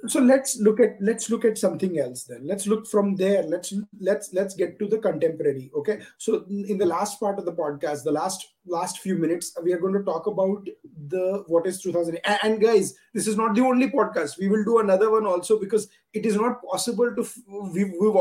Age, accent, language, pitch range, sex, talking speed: 20-39, Indian, English, 185-230 Hz, male, 220 wpm